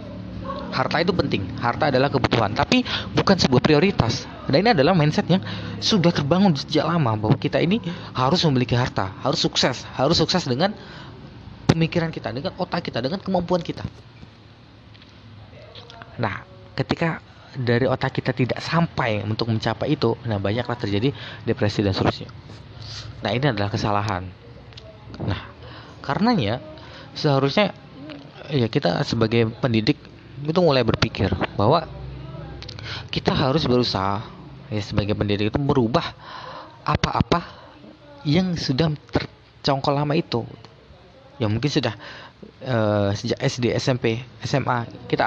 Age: 20-39